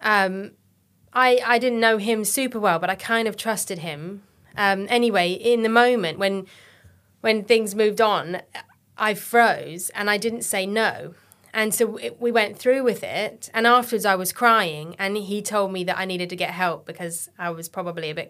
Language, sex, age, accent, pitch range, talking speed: English, female, 30-49, British, 180-225 Hz, 195 wpm